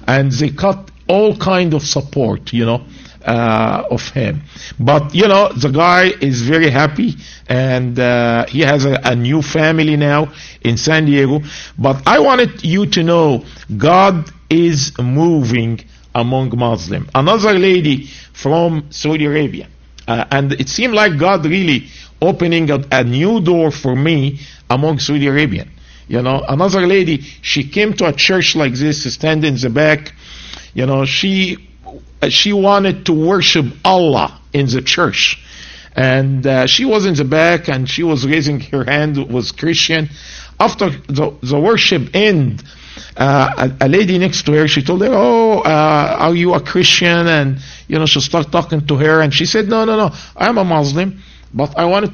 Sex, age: male, 50-69